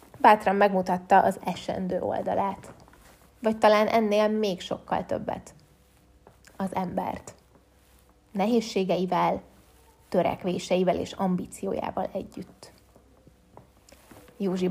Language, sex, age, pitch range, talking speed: Hungarian, female, 20-39, 190-225 Hz, 80 wpm